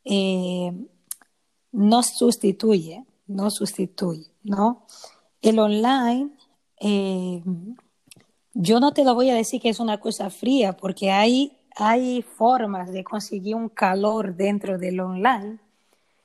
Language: Spanish